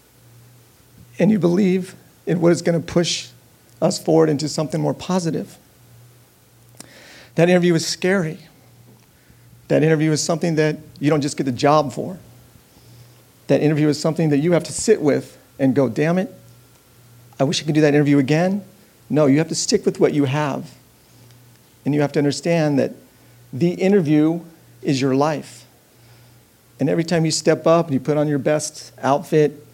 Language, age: English, 40-59